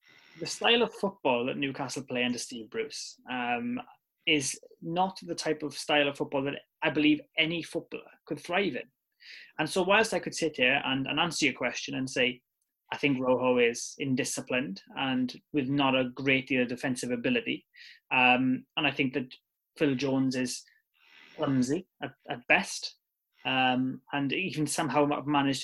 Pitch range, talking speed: 130-165 Hz, 170 wpm